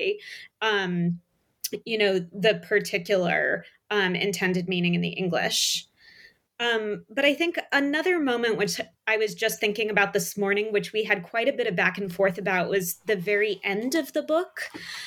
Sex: female